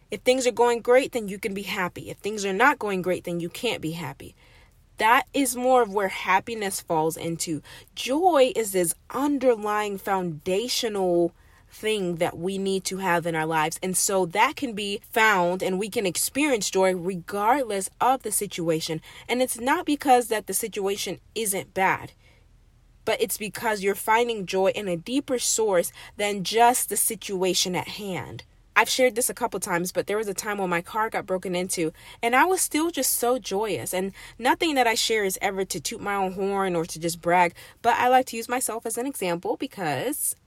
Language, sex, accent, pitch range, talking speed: English, female, American, 180-240 Hz, 195 wpm